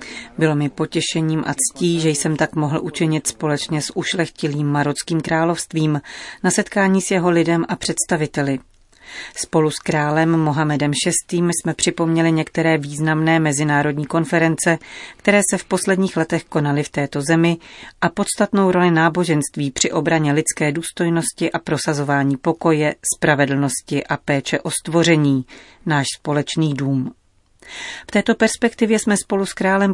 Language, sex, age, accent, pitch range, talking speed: Czech, female, 30-49, native, 145-175 Hz, 135 wpm